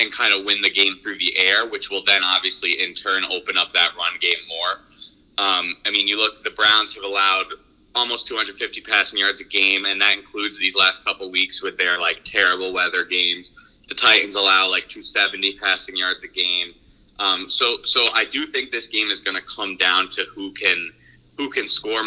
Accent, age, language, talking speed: American, 20-39, English, 210 wpm